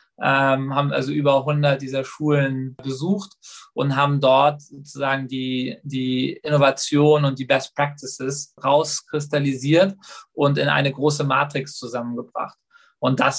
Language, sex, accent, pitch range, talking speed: German, male, German, 135-155 Hz, 120 wpm